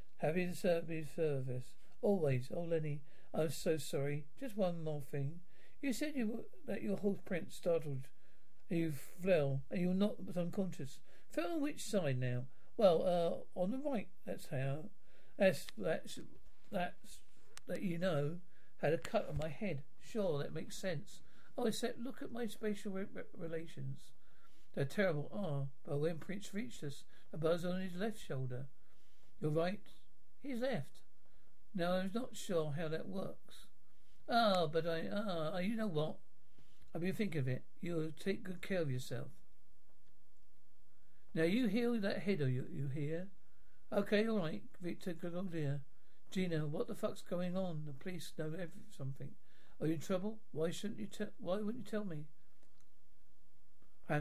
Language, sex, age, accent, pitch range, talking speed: English, male, 60-79, British, 150-200 Hz, 170 wpm